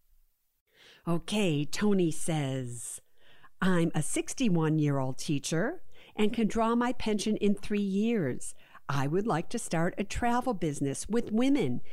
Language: English